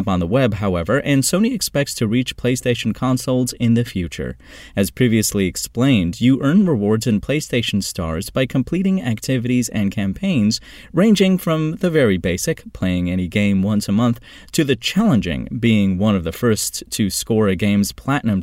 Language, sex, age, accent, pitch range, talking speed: English, male, 30-49, American, 95-130 Hz, 170 wpm